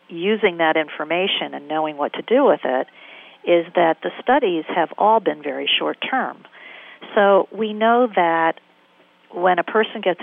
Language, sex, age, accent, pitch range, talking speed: English, female, 50-69, American, 150-190 Hz, 165 wpm